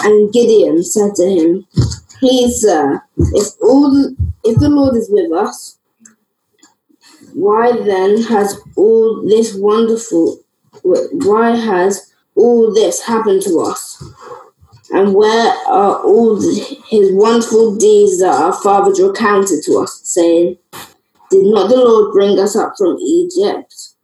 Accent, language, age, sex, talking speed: British, English, 20-39, female, 125 wpm